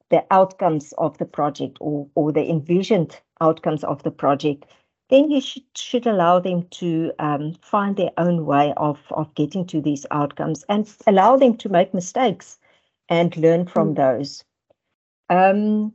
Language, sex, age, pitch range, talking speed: English, female, 60-79, 165-205 Hz, 160 wpm